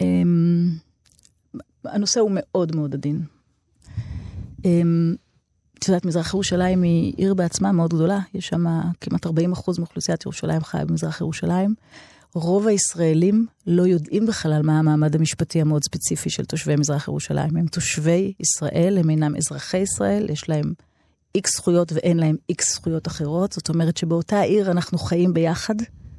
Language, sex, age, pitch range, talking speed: Hebrew, female, 30-49, 155-185 Hz, 140 wpm